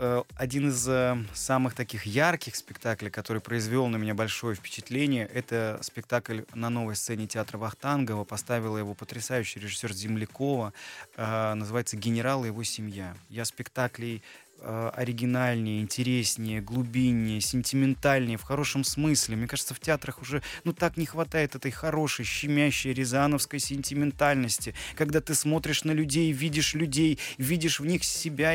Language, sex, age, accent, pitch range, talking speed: Russian, male, 20-39, native, 115-155 Hz, 130 wpm